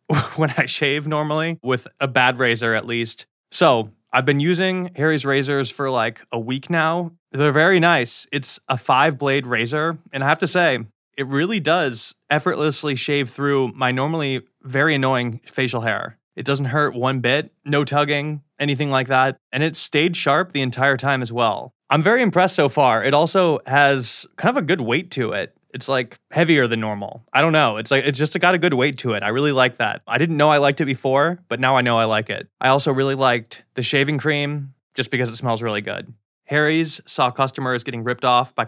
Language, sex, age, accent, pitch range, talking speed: English, male, 20-39, American, 125-145 Hz, 210 wpm